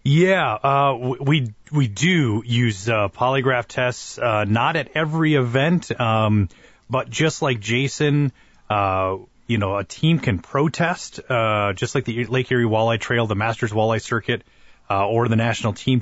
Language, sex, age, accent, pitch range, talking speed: English, male, 30-49, American, 105-135 Hz, 160 wpm